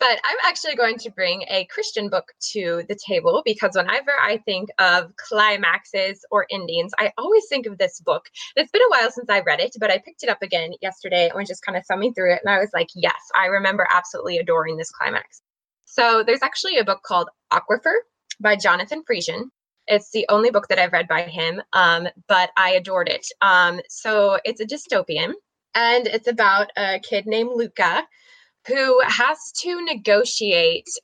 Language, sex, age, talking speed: English, female, 20-39, 195 wpm